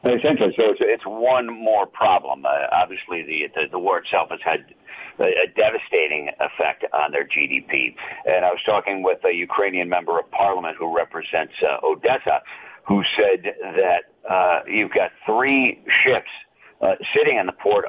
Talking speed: 160 wpm